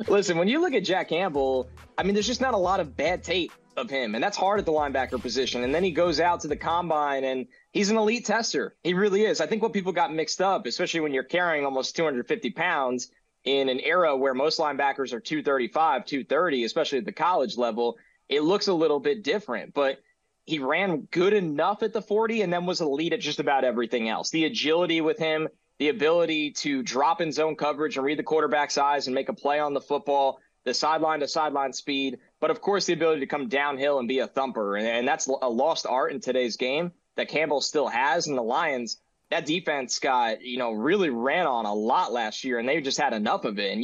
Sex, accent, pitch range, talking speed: male, American, 135-175 Hz, 230 wpm